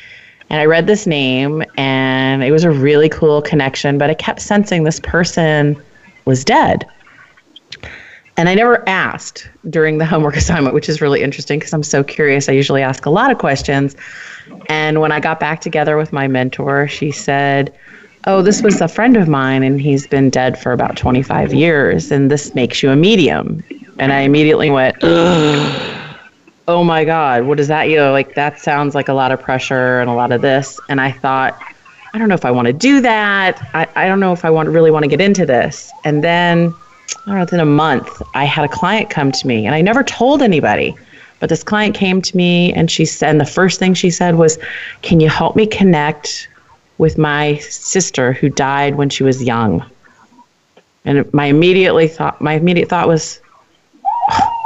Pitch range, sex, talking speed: 140-175 Hz, female, 205 wpm